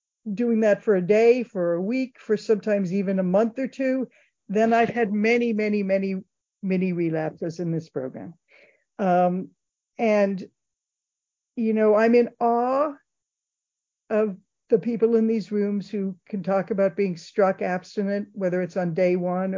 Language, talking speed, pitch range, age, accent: English, 155 wpm, 185-225 Hz, 50-69, American